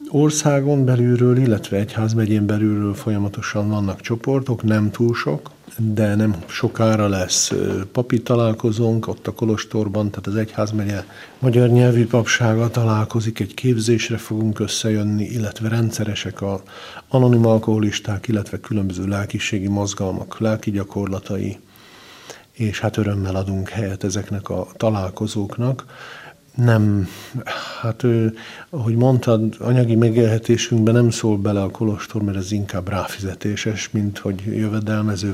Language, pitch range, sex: Hungarian, 100-115 Hz, male